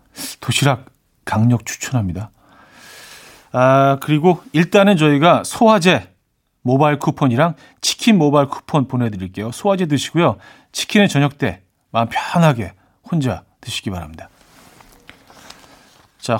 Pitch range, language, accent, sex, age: 125-170 Hz, Korean, native, male, 40-59